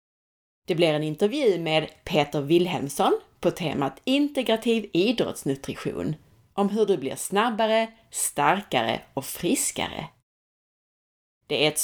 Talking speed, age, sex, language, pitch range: 110 wpm, 30-49, female, Swedish, 150-220 Hz